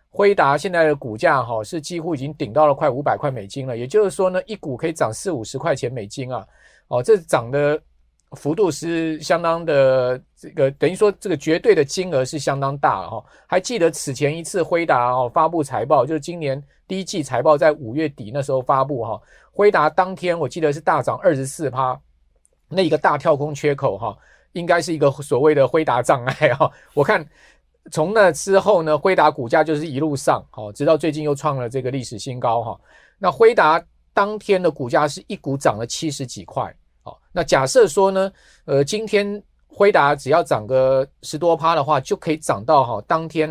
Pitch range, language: 130-170 Hz, Chinese